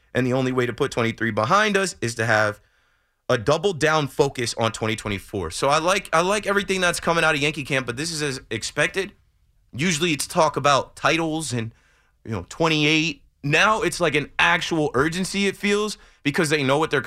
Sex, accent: male, American